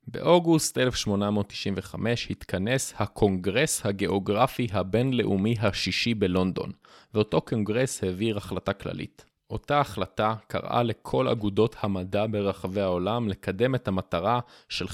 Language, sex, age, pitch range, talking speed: Hebrew, male, 20-39, 95-115 Hz, 100 wpm